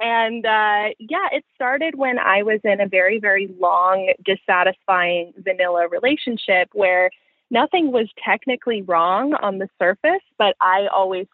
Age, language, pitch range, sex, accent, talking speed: 20-39, English, 180-220 Hz, female, American, 145 wpm